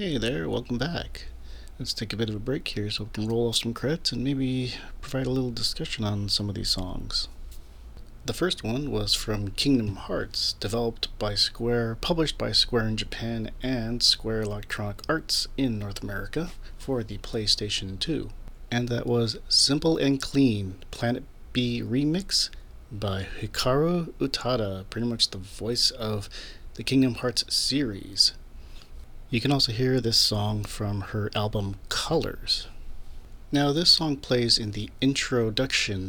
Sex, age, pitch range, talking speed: male, 40-59, 100-125 Hz, 155 wpm